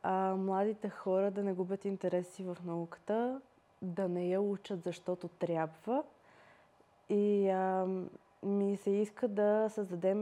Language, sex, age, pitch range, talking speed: Bulgarian, female, 20-39, 180-210 Hz, 130 wpm